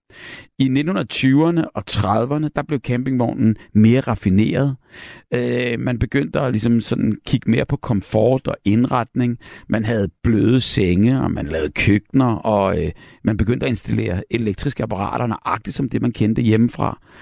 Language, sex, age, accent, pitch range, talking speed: Danish, male, 60-79, native, 110-135 Hz, 135 wpm